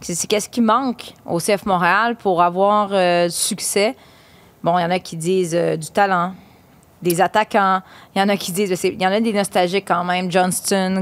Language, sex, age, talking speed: French, female, 30-49, 205 wpm